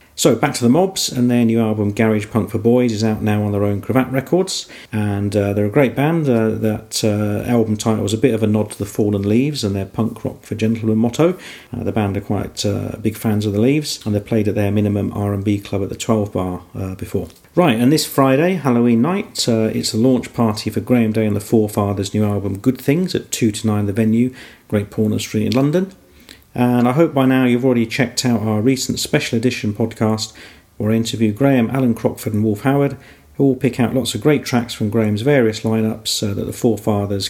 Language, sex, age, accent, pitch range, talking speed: English, male, 40-59, British, 105-125 Hz, 230 wpm